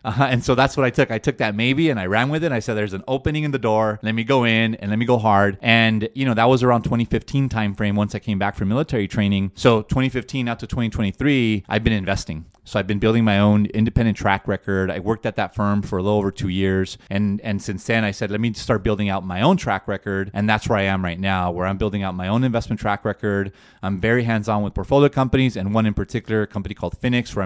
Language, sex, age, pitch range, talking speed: English, male, 30-49, 100-115 Hz, 265 wpm